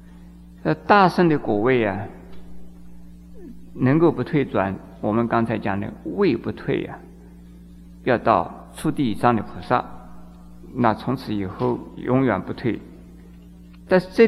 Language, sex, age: Chinese, male, 50-69